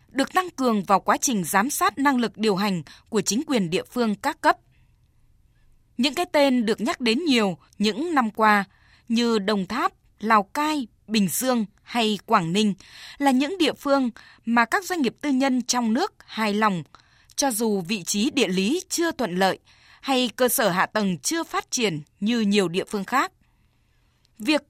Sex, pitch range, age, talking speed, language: female, 210-270 Hz, 20-39, 185 wpm, Vietnamese